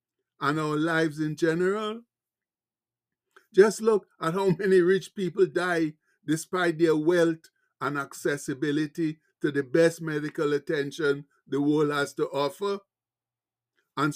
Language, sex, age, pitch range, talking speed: English, male, 60-79, 155-185 Hz, 125 wpm